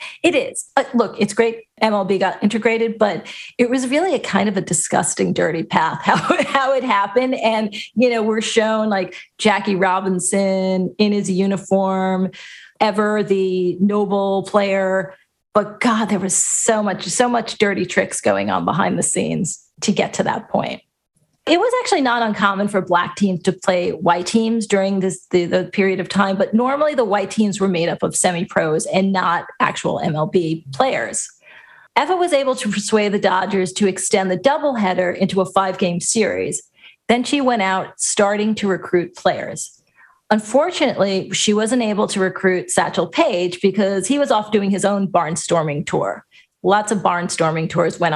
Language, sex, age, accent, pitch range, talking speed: English, female, 40-59, American, 185-230 Hz, 170 wpm